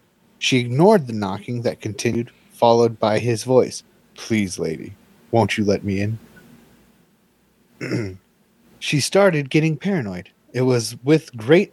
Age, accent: 30-49, American